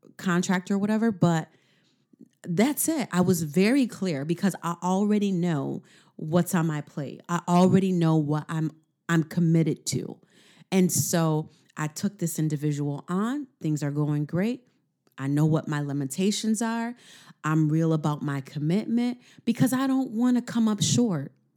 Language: English